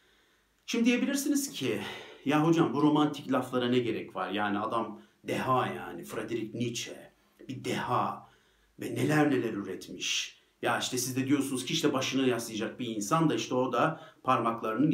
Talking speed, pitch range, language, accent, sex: 155 wpm, 130-165 Hz, Turkish, native, male